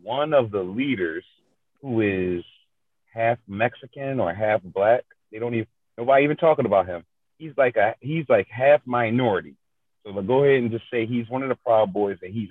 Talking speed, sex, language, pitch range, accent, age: 195 wpm, male, English, 120-185 Hz, American, 30-49